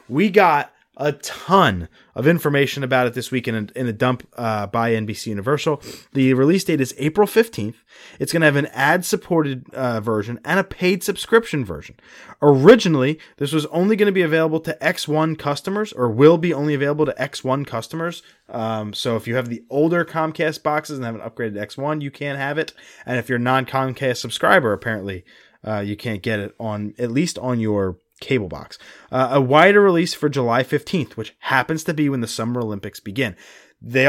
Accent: American